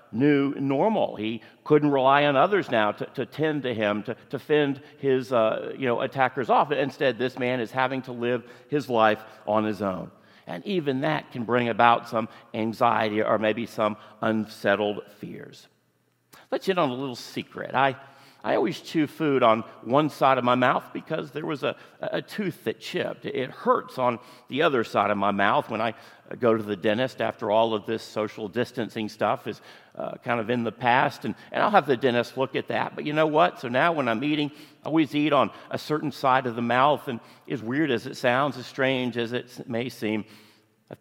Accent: American